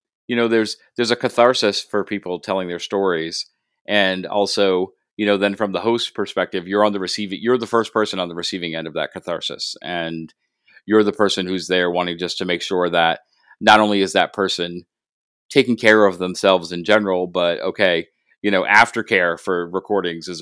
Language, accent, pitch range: English, American, 90-120 Hz